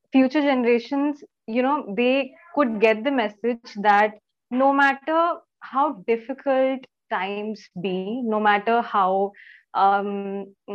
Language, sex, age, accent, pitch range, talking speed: English, female, 20-39, Indian, 195-255 Hz, 110 wpm